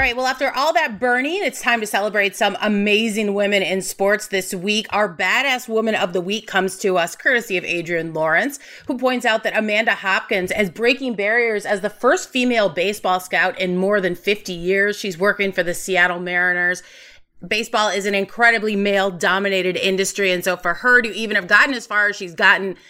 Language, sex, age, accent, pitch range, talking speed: English, female, 30-49, American, 185-220 Hz, 200 wpm